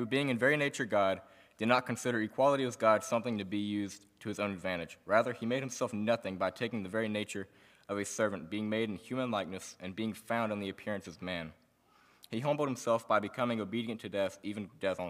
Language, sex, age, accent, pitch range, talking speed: English, male, 20-39, American, 95-115 Hz, 225 wpm